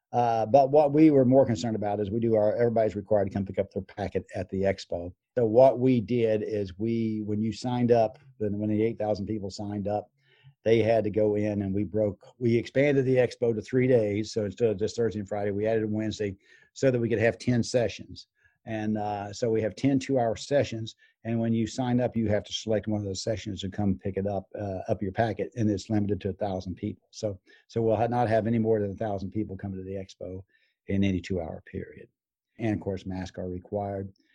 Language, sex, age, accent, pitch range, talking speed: English, male, 50-69, American, 100-115 Hz, 240 wpm